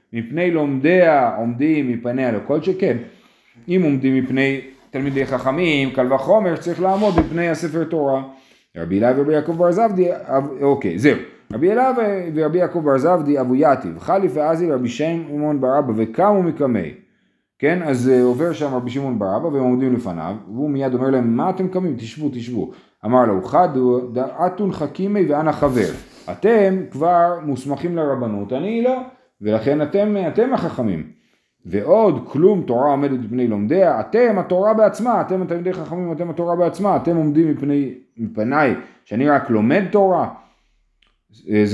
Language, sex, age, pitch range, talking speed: Hebrew, male, 30-49, 120-175 Hz, 145 wpm